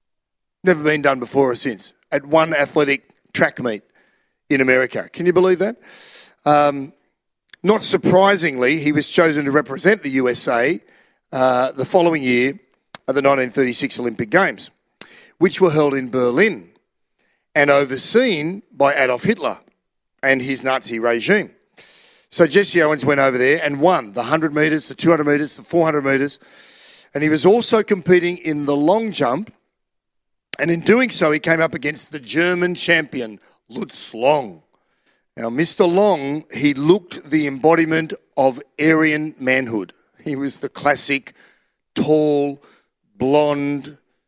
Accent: Australian